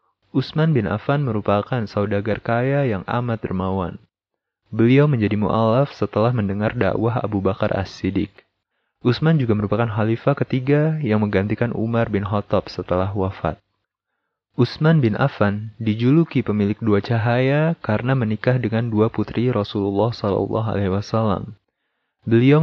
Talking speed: 120 wpm